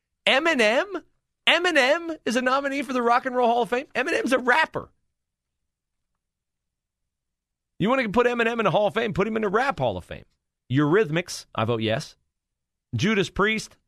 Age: 40-59